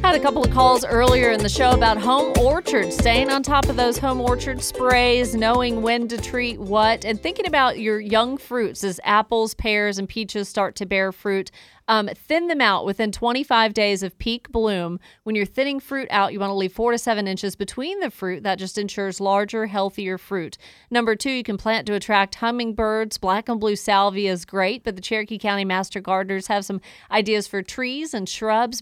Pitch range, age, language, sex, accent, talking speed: 195-235 Hz, 30-49, English, female, American, 205 wpm